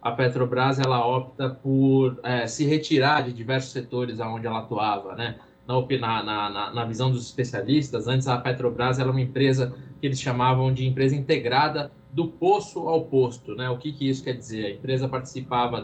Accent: Brazilian